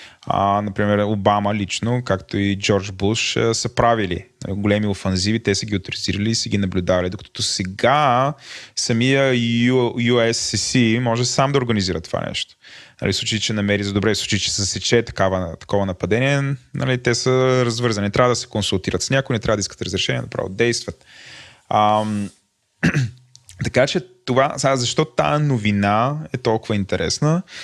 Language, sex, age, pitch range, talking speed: Bulgarian, male, 20-39, 100-125 Hz, 150 wpm